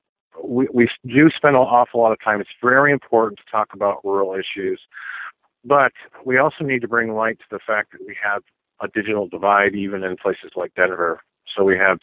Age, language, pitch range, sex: 50-69, English, 95-110 Hz, male